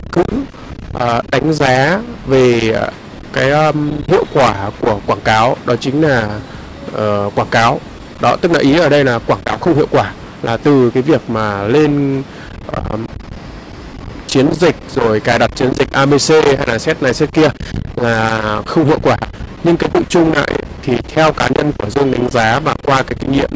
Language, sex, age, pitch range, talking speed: Vietnamese, male, 20-39, 110-140 Hz, 185 wpm